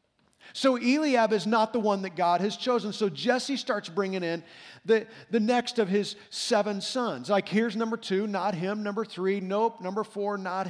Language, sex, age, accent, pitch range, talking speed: English, male, 40-59, American, 200-245 Hz, 190 wpm